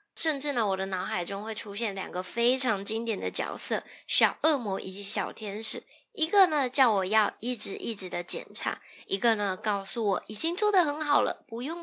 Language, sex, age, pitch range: Chinese, female, 20-39, 200-265 Hz